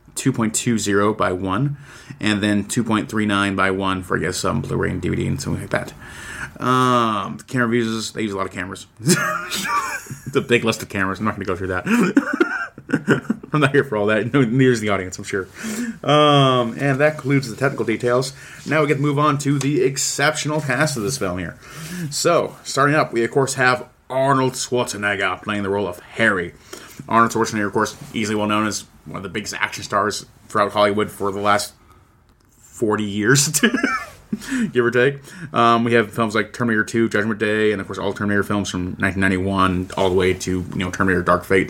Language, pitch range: English, 100-130 Hz